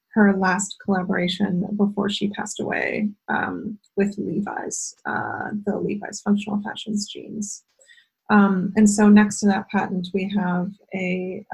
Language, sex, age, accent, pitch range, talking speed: English, female, 20-39, American, 195-215 Hz, 135 wpm